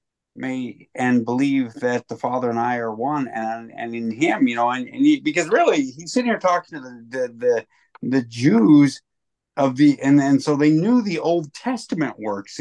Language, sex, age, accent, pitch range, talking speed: English, male, 50-69, American, 145-210 Hz, 200 wpm